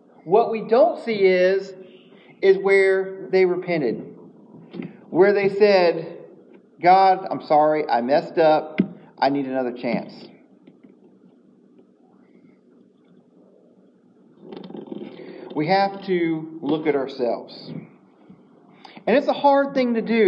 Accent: American